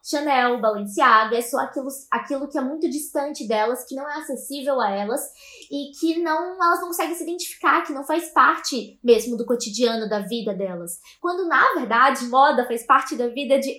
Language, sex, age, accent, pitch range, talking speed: Portuguese, female, 10-29, Brazilian, 245-310 Hz, 185 wpm